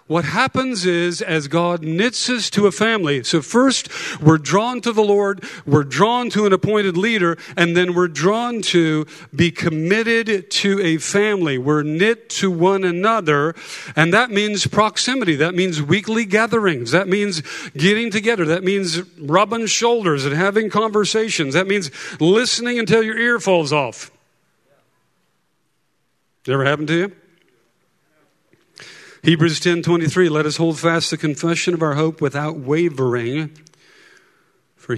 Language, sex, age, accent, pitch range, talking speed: English, male, 50-69, American, 155-205 Hz, 145 wpm